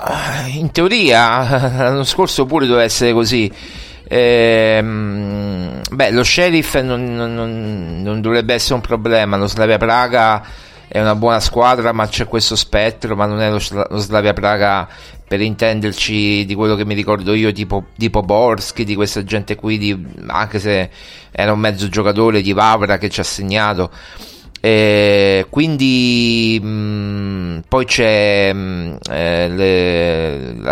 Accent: native